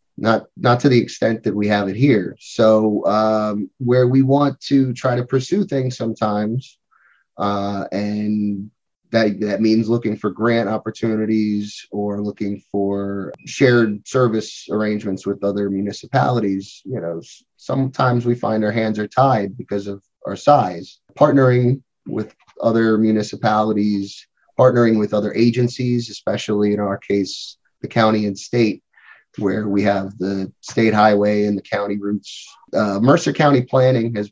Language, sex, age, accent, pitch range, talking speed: English, male, 30-49, American, 100-125 Hz, 145 wpm